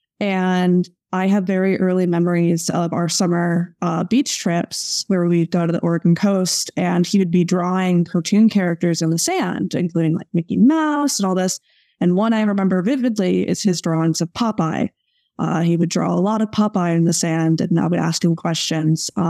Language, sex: English, female